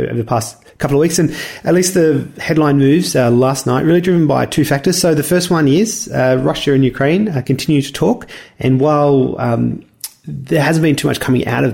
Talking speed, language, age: 225 wpm, English, 30-49